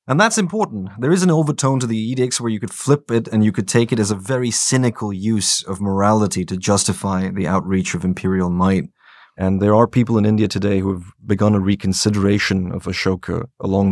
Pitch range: 95-115 Hz